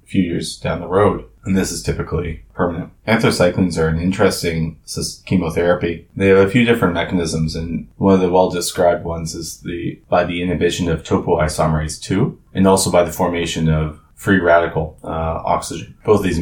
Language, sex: English, male